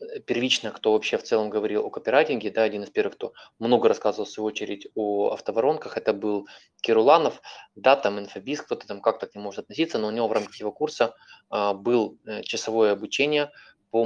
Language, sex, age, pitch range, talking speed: Russian, male, 20-39, 105-120 Hz, 195 wpm